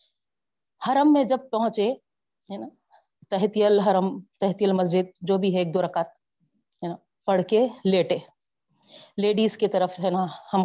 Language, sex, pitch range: Urdu, female, 185-265 Hz